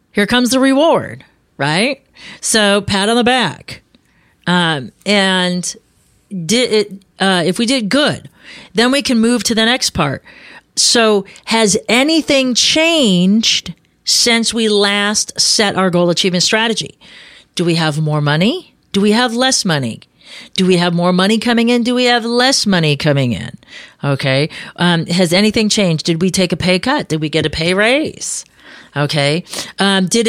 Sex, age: female, 40-59